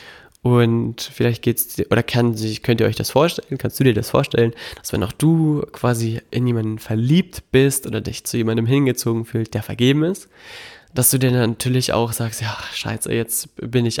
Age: 20-39